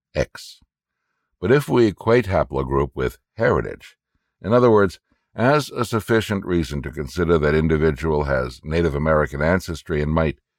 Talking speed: 140 wpm